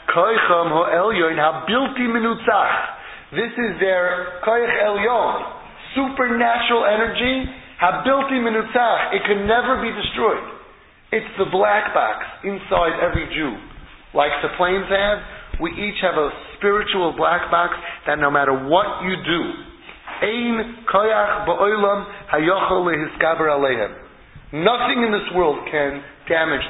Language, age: English, 30-49